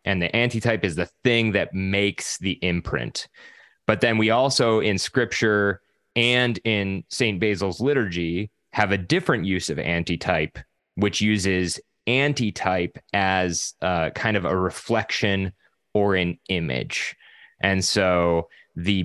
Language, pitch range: English, 90-105 Hz